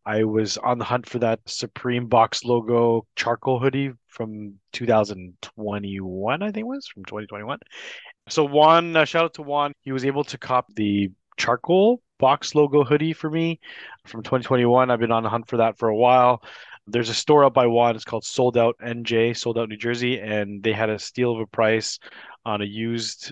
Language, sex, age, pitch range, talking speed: English, male, 20-39, 110-130 Hz, 195 wpm